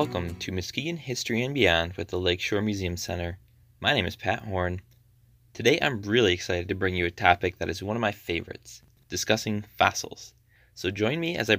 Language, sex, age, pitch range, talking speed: English, male, 20-39, 90-115 Hz, 195 wpm